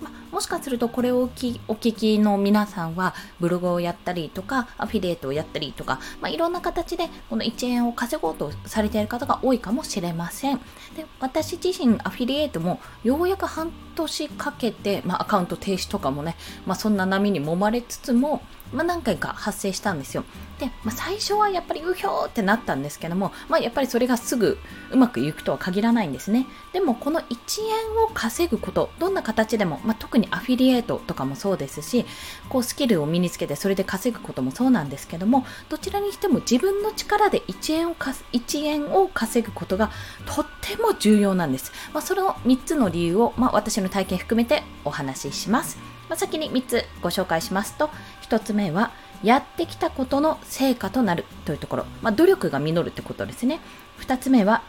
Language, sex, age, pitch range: Japanese, female, 20-39, 195-300 Hz